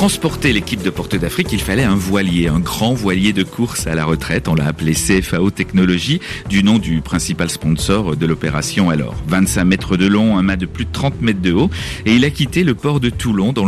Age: 40-59